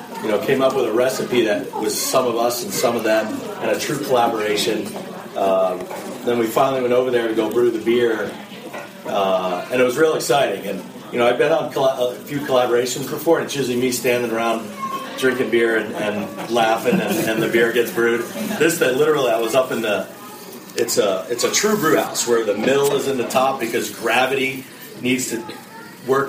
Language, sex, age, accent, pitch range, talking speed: English, male, 40-59, American, 115-135 Hz, 210 wpm